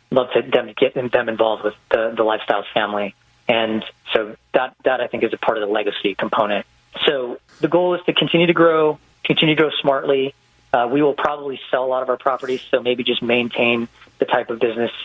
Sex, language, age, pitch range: male, English, 30-49, 120-140 Hz